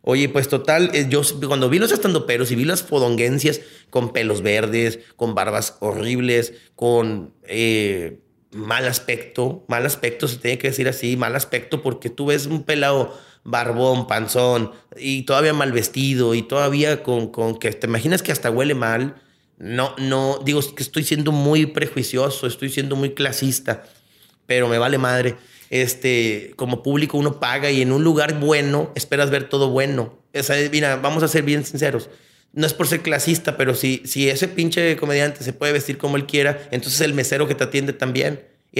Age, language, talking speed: 30-49, Spanish, 180 wpm